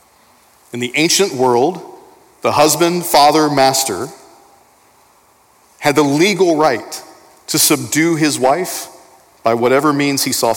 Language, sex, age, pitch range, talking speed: English, male, 40-59, 120-155 Hz, 120 wpm